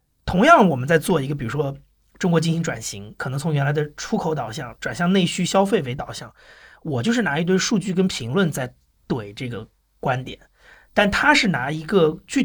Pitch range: 150-205 Hz